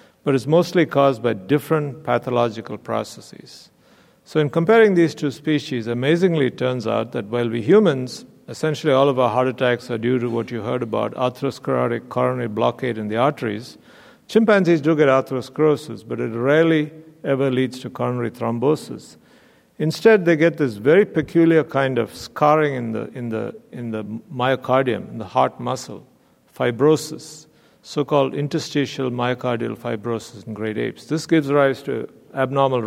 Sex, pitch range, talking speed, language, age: male, 120-150 Hz, 150 wpm, English, 50-69